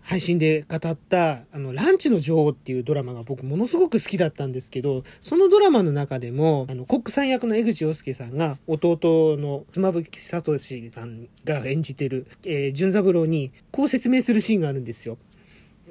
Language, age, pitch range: Japanese, 40-59, 145-235 Hz